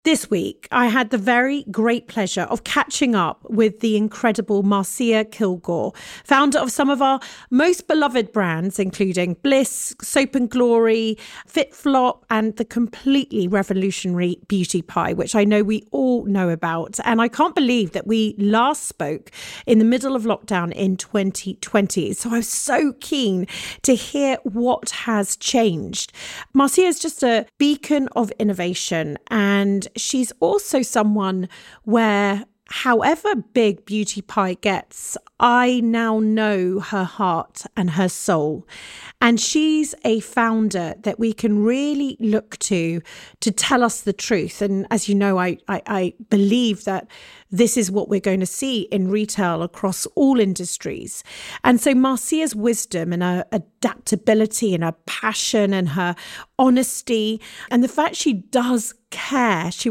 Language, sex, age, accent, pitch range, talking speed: English, female, 40-59, British, 200-255 Hz, 150 wpm